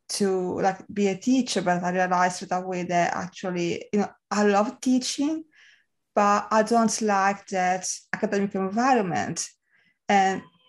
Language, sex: English, female